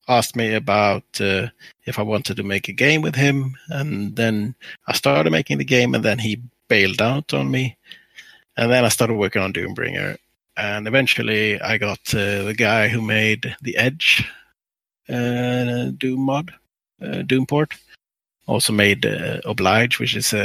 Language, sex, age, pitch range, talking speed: English, male, 30-49, 105-125 Hz, 165 wpm